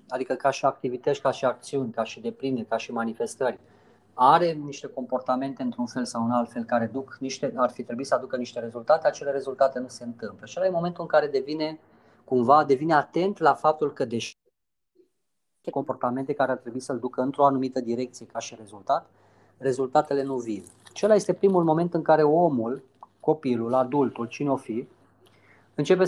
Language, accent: Romanian, native